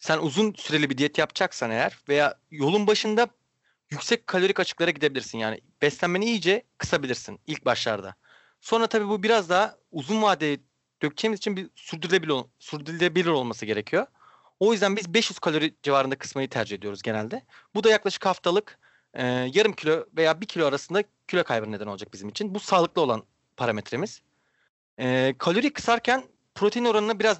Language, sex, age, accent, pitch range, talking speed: Turkish, male, 30-49, native, 140-205 Hz, 155 wpm